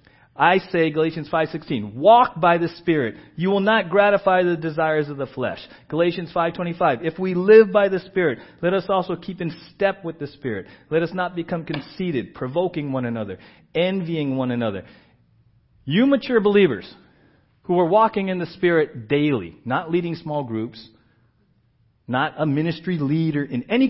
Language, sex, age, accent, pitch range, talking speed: English, male, 40-59, American, 135-195 Hz, 165 wpm